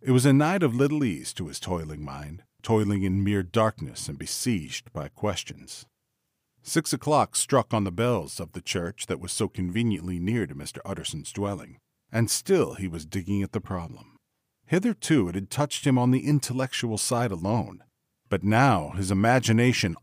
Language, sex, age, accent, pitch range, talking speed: English, male, 40-59, American, 100-125 Hz, 175 wpm